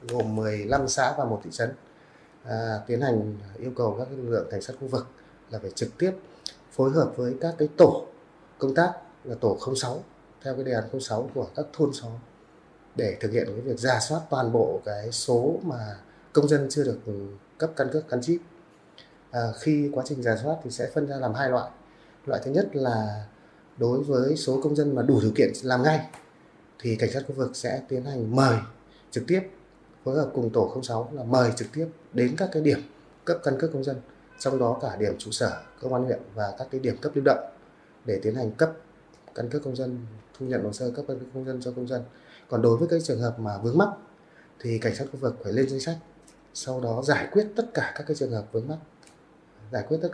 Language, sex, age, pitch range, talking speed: Vietnamese, male, 30-49, 120-150 Hz, 230 wpm